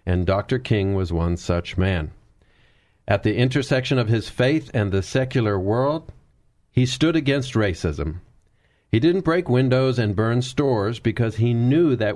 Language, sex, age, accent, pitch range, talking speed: English, male, 40-59, American, 95-125 Hz, 160 wpm